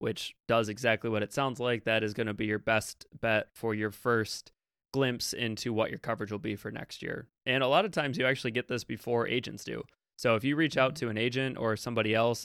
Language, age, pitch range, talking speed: English, 20-39, 110-135 Hz, 245 wpm